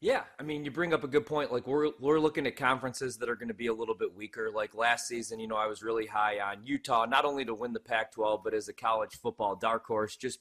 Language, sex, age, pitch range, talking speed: English, male, 30-49, 105-125 Hz, 280 wpm